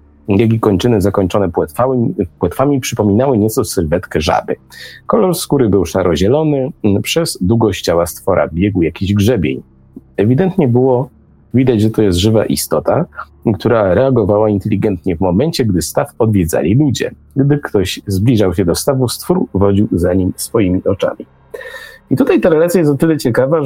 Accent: native